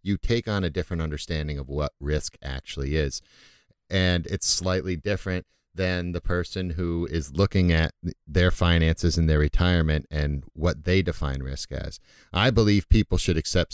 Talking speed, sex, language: 165 wpm, male, English